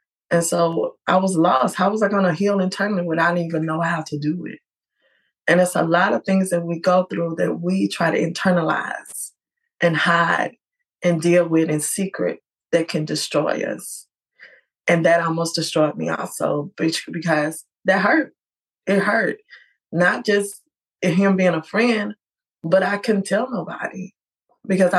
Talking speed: 170 wpm